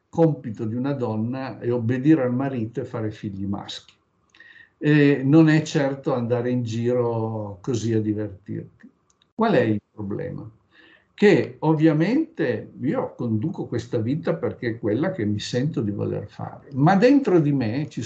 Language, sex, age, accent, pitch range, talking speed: Italian, male, 50-69, native, 110-160 Hz, 150 wpm